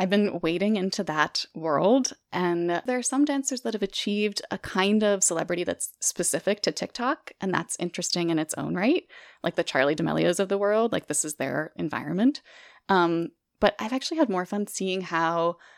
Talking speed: 190 wpm